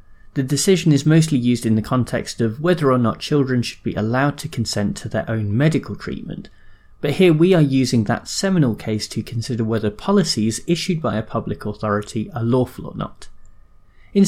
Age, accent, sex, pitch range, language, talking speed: 30-49, British, male, 110-150 Hz, English, 190 wpm